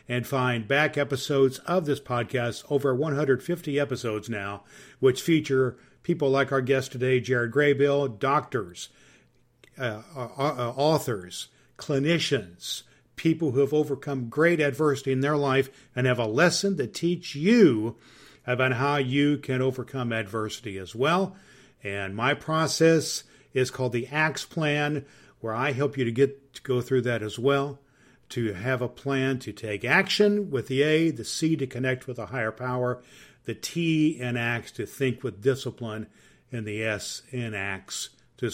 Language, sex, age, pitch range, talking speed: English, male, 50-69, 120-150 Hz, 155 wpm